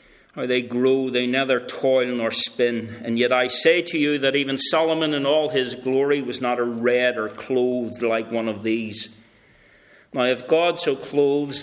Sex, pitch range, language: male, 115-135 Hz, English